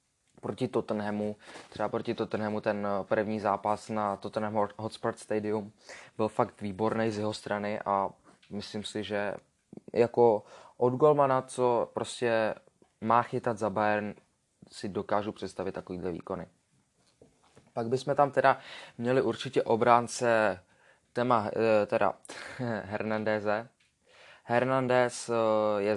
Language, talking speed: Czech, 110 wpm